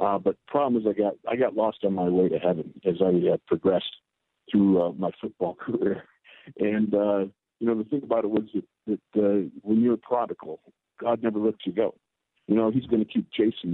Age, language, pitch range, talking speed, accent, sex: 50-69, English, 95-110 Hz, 225 wpm, American, male